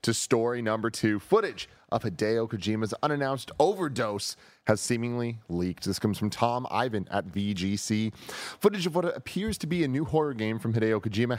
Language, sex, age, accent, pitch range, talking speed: English, male, 30-49, American, 100-135 Hz, 175 wpm